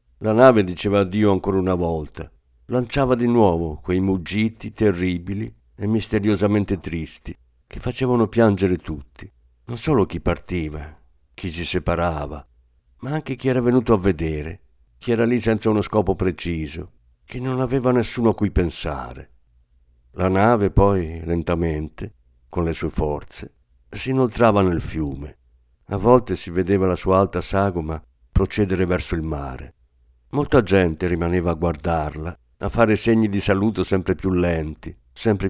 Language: Italian